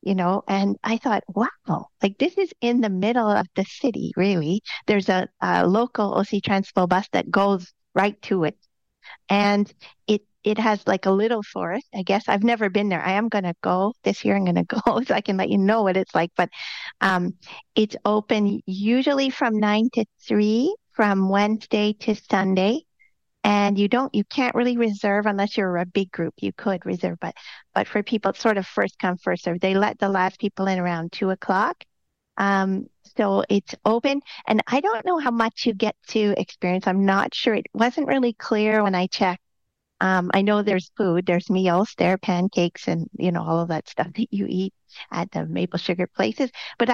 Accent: American